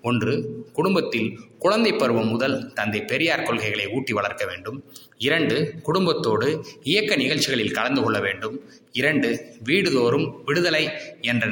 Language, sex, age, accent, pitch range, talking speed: Tamil, male, 20-39, native, 115-150 Hz, 115 wpm